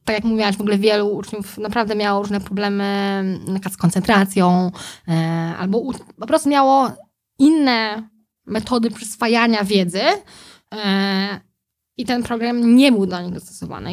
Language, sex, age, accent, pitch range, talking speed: Polish, female, 20-39, native, 190-225 Hz, 125 wpm